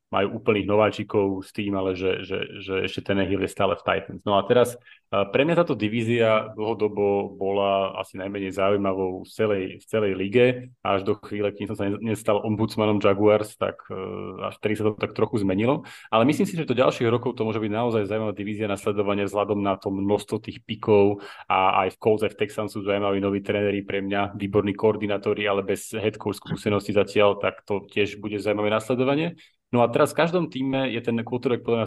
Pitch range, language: 100-115 Hz, Slovak